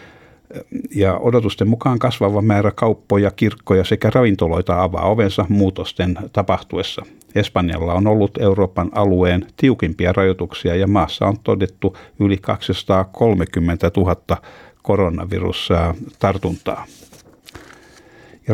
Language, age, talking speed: Finnish, 60-79, 90 wpm